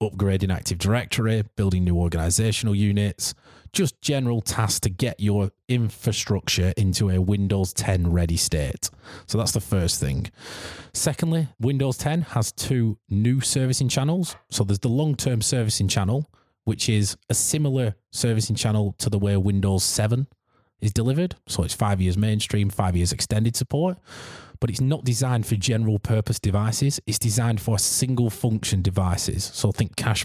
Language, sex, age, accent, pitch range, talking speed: English, male, 20-39, British, 95-120 Hz, 150 wpm